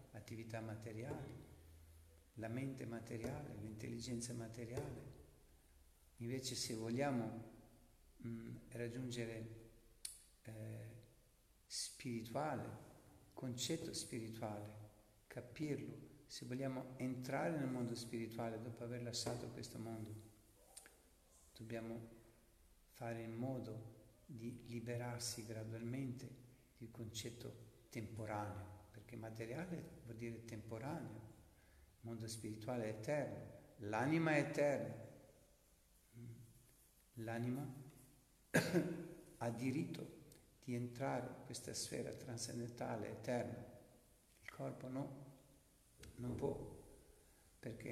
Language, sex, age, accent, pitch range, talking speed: Italian, male, 50-69, native, 115-130 Hz, 85 wpm